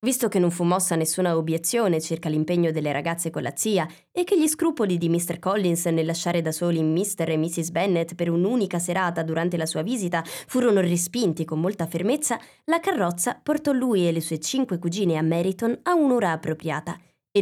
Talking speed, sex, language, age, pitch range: 195 wpm, female, Italian, 20-39, 165-210 Hz